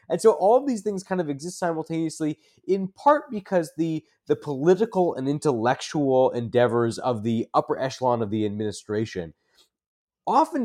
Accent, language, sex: American, English, male